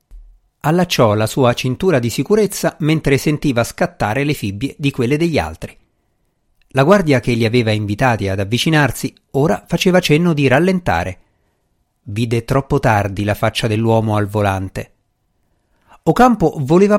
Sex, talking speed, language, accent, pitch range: male, 135 wpm, Italian, native, 110-155 Hz